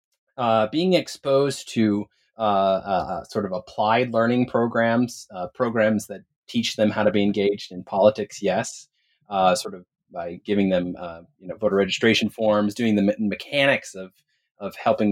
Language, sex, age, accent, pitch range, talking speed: English, male, 30-49, American, 105-135 Hz, 165 wpm